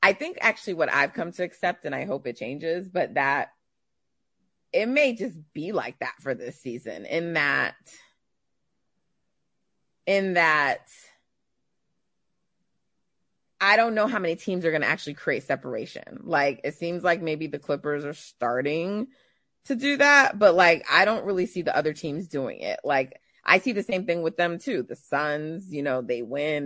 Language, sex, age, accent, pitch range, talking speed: English, female, 30-49, American, 150-195 Hz, 175 wpm